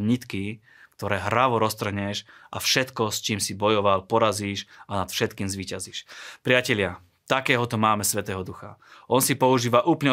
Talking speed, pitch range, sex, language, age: 140 wpm, 100-120 Hz, male, Slovak, 30-49